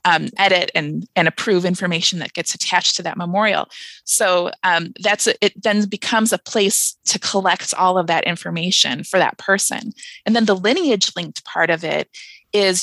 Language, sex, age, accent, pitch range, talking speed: English, female, 20-39, American, 185-230 Hz, 180 wpm